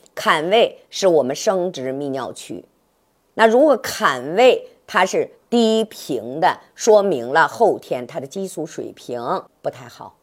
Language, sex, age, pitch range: Chinese, female, 50-69, 170-270 Hz